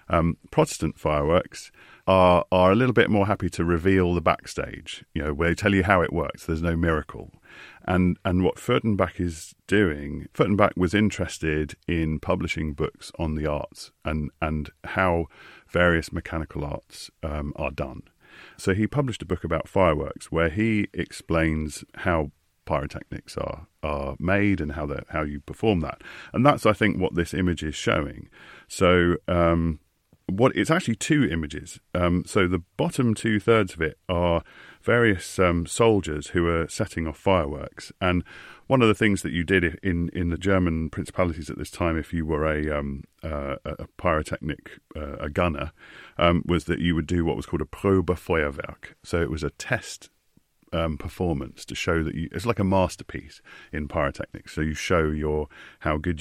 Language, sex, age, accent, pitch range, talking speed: English, male, 40-59, British, 75-95 Hz, 175 wpm